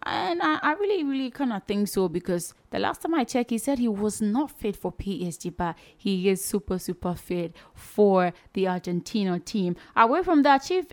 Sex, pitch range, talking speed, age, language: female, 175-215 Hz, 205 wpm, 20-39, English